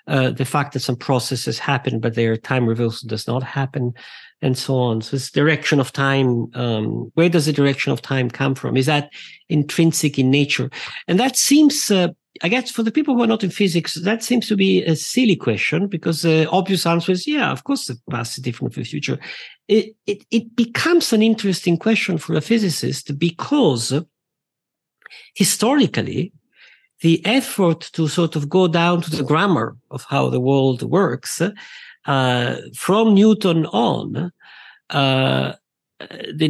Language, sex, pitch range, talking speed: English, male, 135-200 Hz, 175 wpm